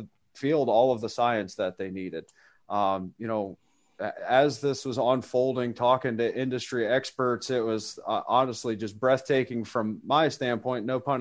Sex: male